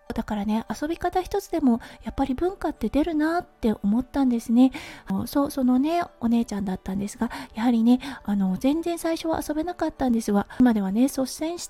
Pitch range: 230-315 Hz